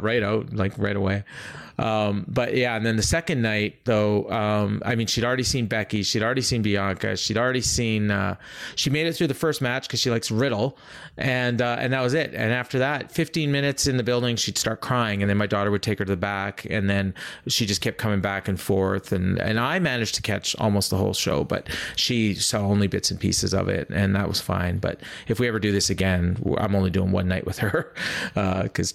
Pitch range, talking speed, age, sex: 100-125 Hz, 240 wpm, 30-49, male